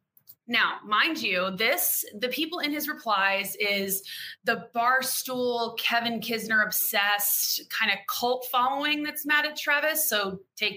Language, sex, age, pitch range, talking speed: English, female, 20-39, 195-280 Hz, 140 wpm